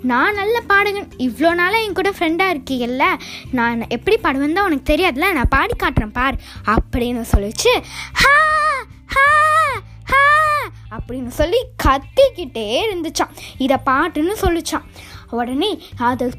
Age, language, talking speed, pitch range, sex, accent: 20-39, Tamil, 110 wpm, 260-390 Hz, female, native